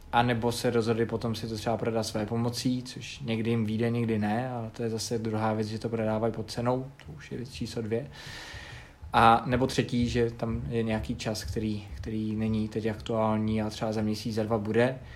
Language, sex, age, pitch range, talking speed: Czech, male, 20-39, 110-125 Hz, 215 wpm